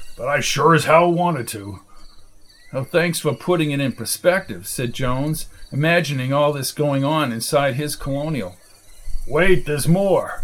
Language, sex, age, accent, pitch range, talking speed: English, male, 50-69, American, 140-195 Hz, 150 wpm